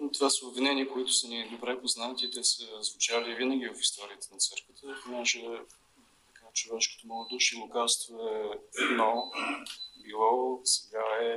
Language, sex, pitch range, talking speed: Bulgarian, male, 110-130 Hz, 150 wpm